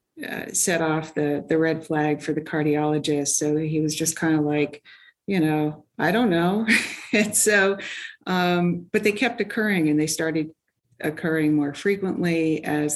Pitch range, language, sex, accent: 150-165 Hz, English, female, American